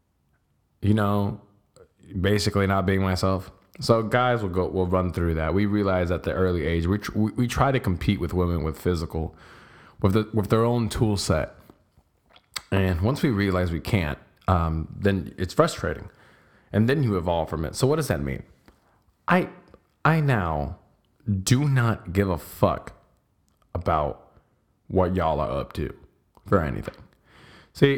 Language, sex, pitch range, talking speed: English, male, 90-115 Hz, 160 wpm